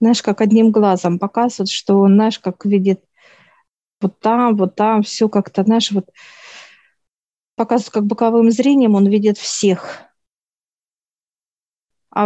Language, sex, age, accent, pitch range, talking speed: Russian, female, 40-59, native, 195-220 Hz, 125 wpm